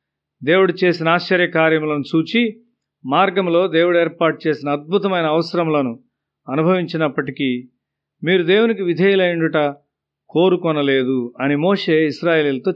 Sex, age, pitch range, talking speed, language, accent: male, 40-59, 145-190 Hz, 85 wpm, Telugu, native